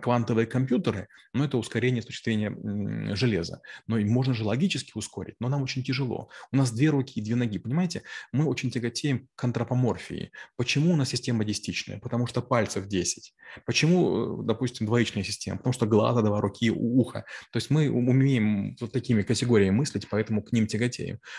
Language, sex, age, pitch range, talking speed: Russian, male, 20-39, 105-130 Hz, 175 wpm